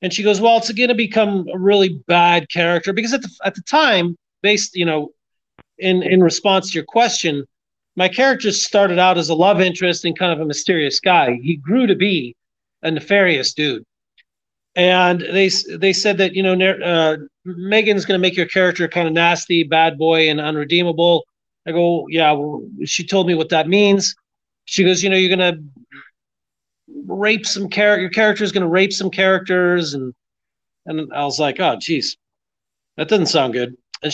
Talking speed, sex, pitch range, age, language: 190 wpm, male, 165-200 Hz, 40-59, English